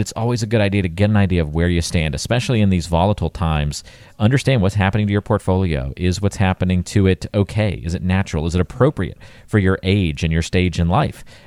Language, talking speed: English, 230 wpm